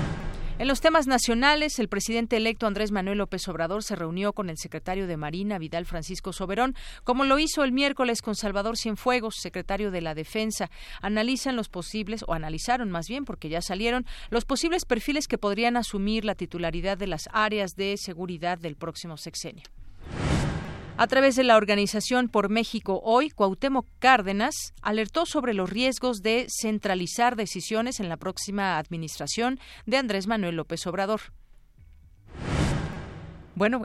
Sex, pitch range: female, 180-245 Hz